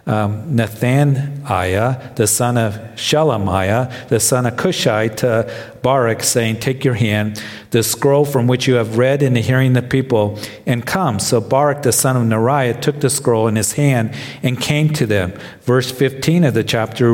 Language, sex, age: English, male, 50-69